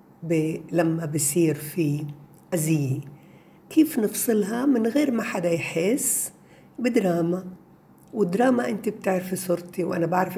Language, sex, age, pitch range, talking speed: Arabic, female, 60-79, 165-225 Hz, 110 wpm